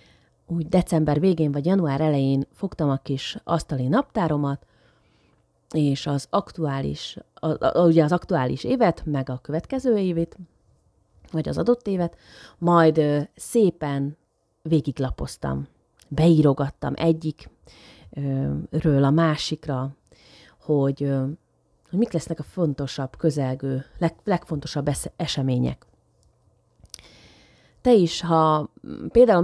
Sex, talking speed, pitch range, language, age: female, 100 wpm, 140-170 Hz, Hungarian, 30-49